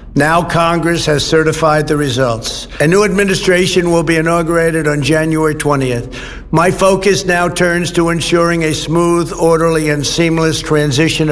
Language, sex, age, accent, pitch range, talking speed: Polish, male, 60-79, American, 150-180 Hz, 145 wpm